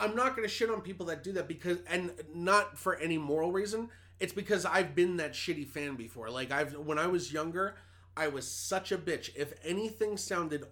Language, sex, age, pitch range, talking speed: English, male, 30-49, 120-165 Hz, 215 wpm